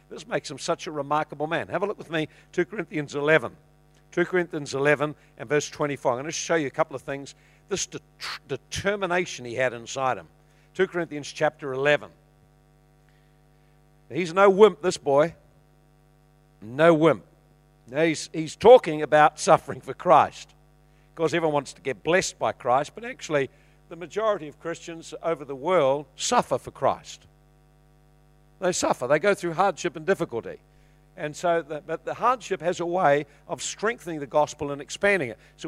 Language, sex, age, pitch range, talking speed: English, male, 50-69, 150-175 Hz, 170 wpm